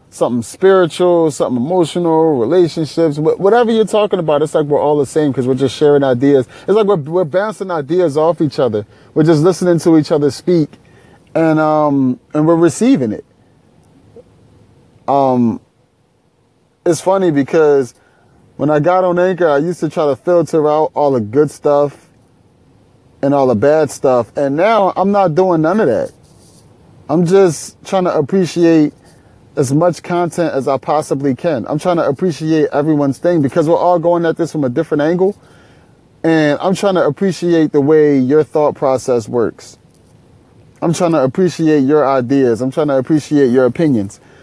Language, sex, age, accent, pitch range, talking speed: English, male, 30-49, American, 140-170 Hz, 170 wpm